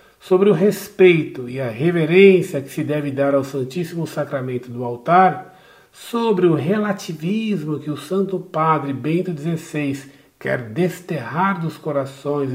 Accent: Brazilian